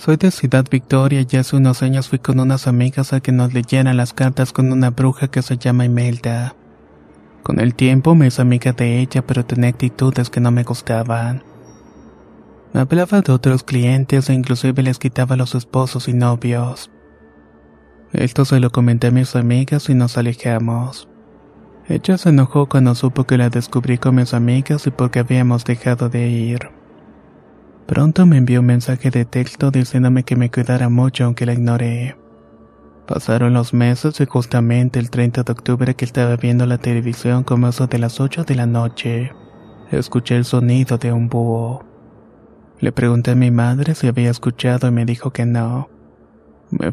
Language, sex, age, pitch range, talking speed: Spanish, male, 30-49, 120-130 Hz, 175 wpm